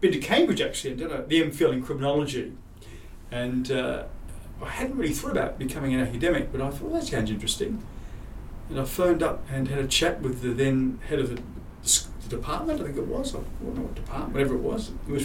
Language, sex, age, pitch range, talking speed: English, male, 40-59, 115-140 Hz, 230 wpm